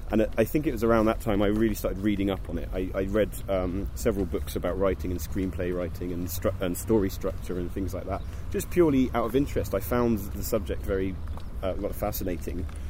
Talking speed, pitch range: 230 wpm, 95-110 Hz